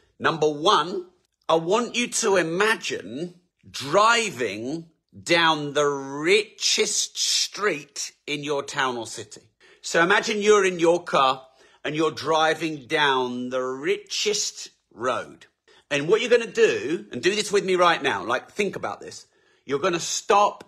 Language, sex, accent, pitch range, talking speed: English, male, British, 155-230 Hz, 150 wpm